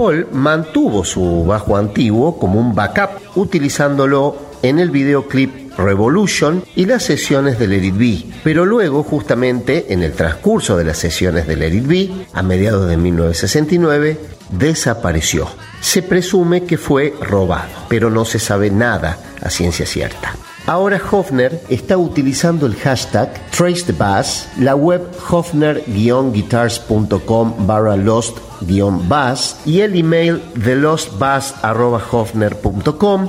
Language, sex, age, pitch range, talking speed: Spanish, male, 50-69, 100-155 Hz, 115 wpm